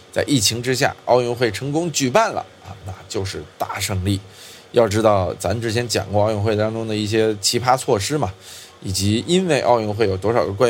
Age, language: 20-39, Chinese